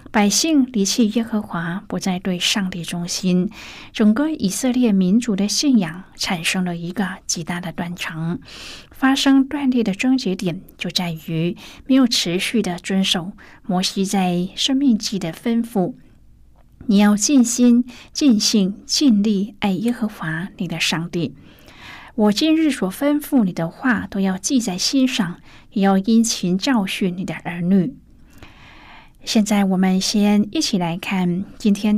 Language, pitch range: Chinese, 185-235 Hz